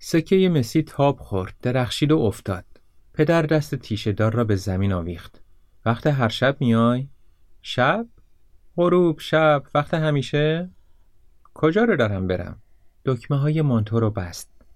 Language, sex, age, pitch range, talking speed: Persian, male, 30-49, 95-140 Hz, 140 wpm